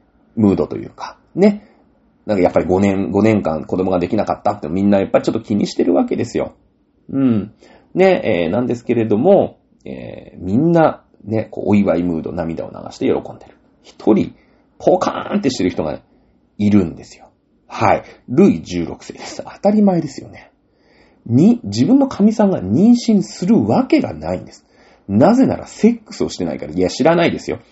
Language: Japanese